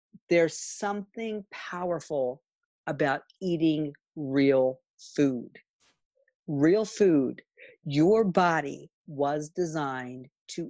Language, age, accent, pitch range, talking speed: English, 50-69, American, 140-175 Hz, 80 wpm